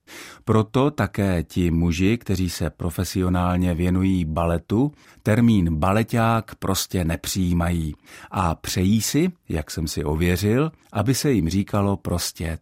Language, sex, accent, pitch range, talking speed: Czech, male, native, 90-115 Hz, 120 wpm